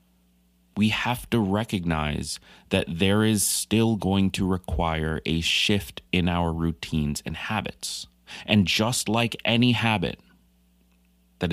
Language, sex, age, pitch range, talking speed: English, male, 30-49, 75-95 Hz, 125 wpm